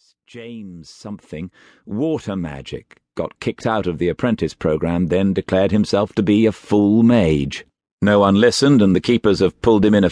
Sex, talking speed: male, 180 wpm